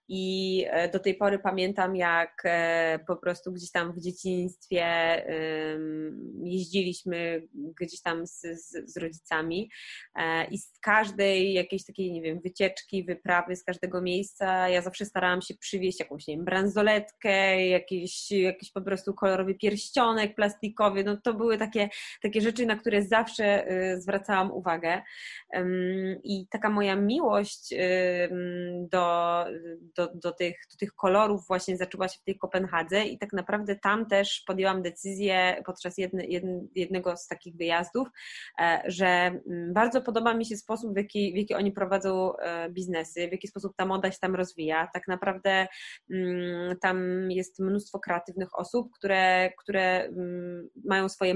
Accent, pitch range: native, 180-200 Hz